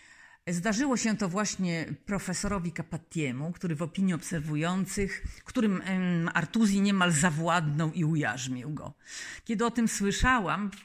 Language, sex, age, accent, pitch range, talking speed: Polish, female, 50-69, native, 155-205 Hz, 115 wpm